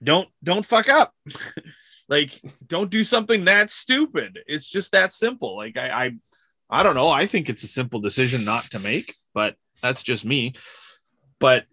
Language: English